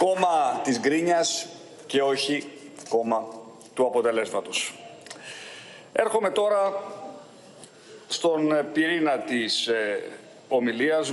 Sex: male